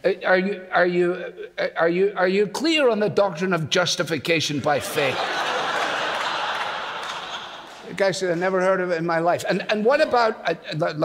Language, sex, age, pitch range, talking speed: English, male, 60-79, 145-195 Hz, 150 wpm